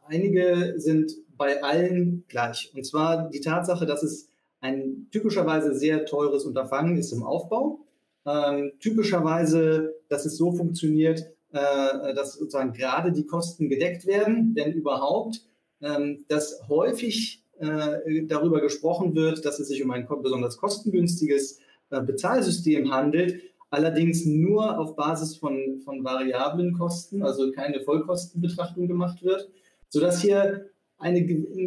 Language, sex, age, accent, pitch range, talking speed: German, male, 30-49, German, 135-175 Hz, 130 wpm